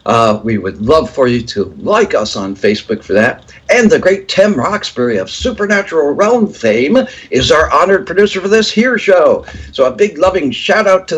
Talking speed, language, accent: 200 wpm, English, American